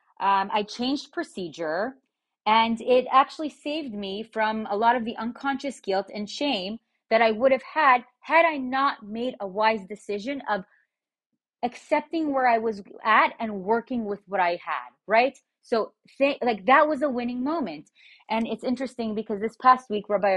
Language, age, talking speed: English, 30-49, 170 wpm